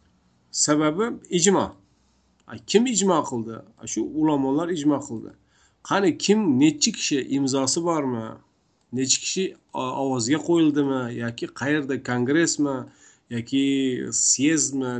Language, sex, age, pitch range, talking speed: Russian, male, 50-69, 125-170 Hz, 110 wpm